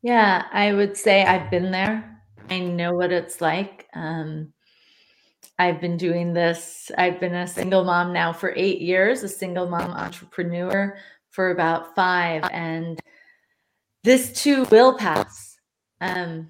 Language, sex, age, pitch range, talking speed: English, female, 30-49, 170-195 Hz, 140 wpm